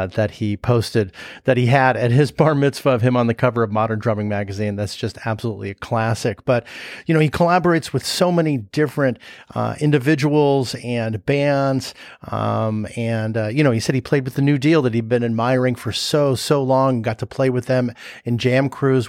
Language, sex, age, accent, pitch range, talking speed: English, male, 40-59, American, 115-140 Hz, 210 wpm